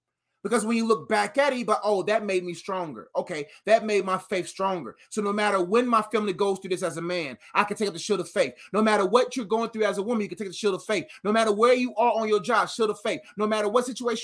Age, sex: 20-39, male